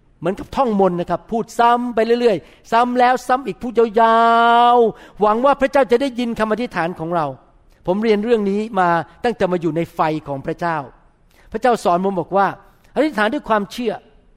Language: Thai